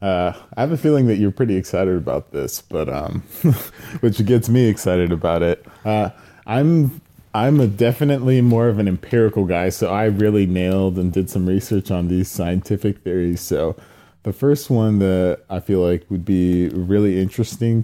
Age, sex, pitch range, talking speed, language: 20-39, male, 90-105 Hz, 180 wpm, English